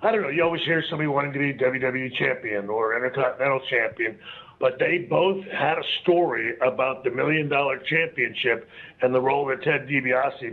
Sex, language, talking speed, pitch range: male, English, 175 wpm, 135-180 Hz